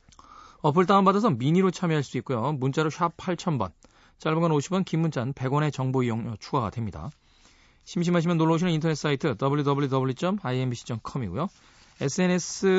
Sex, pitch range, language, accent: male, 110-165 Hz, Korean, native